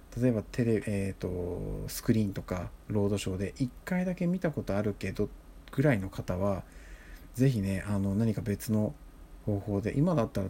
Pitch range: 95-115 Hz